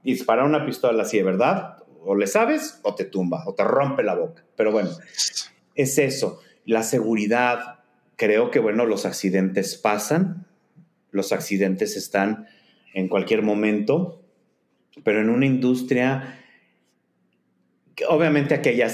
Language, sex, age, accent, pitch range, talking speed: Spanish, male, 40-59, Mexican, 100-145 Hz, 130 wpm